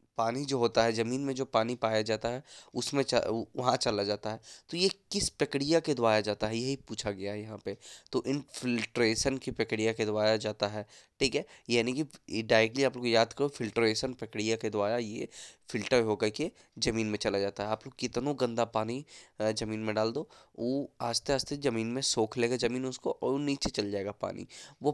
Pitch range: 110-130 Hz